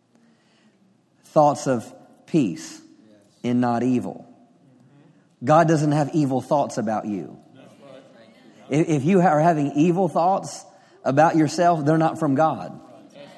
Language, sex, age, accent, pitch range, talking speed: English, male, 40-59, American, 145-175 Hz, 110 wpm